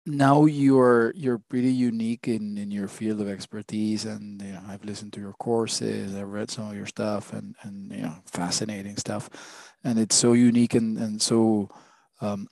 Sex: male